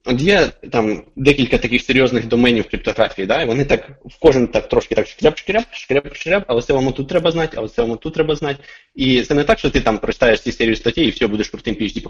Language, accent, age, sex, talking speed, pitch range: Ukrainian, native, 20-39, male, 240 wpm, 105-130 Hz